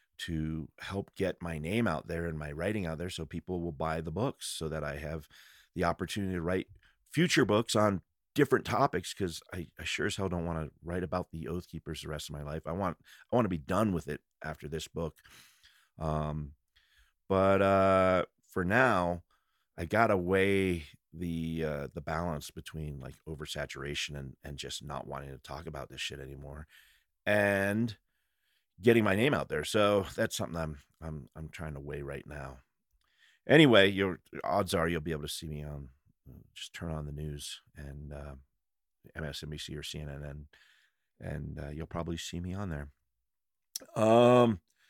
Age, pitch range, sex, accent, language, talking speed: 40-59, 75-95 Hz, male, American, English, 185 wpm